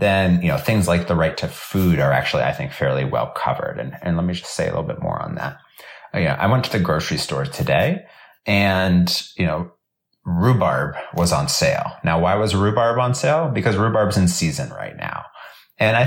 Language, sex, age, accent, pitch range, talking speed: English, male, 30-49, American, 80-115 Hz, 220 wpm